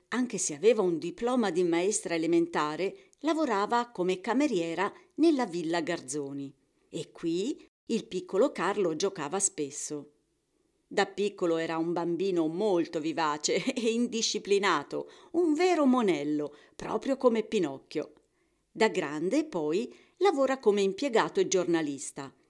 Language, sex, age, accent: Italian, female, 40-59, native